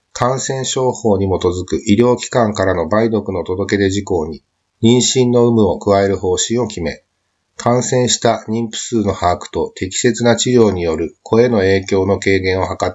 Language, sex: Japanese, male